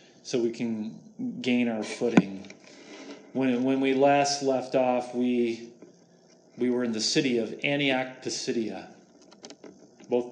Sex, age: male, 40-59